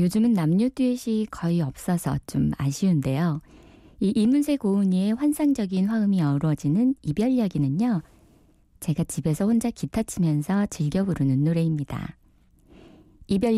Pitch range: 150-225 Hz